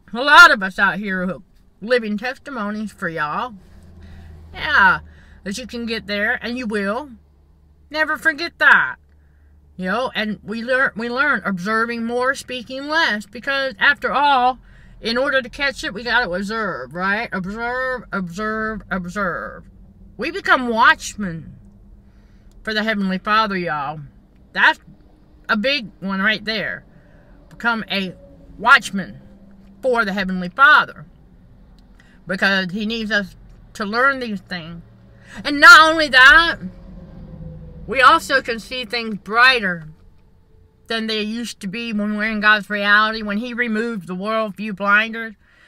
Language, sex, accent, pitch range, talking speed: English, female, American, 180-240 Hz, 135 wpm